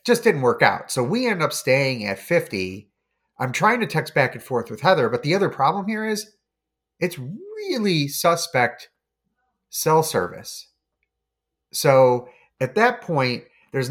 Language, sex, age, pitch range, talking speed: English, male, 30-49, 125-180 Hz, 155 wpm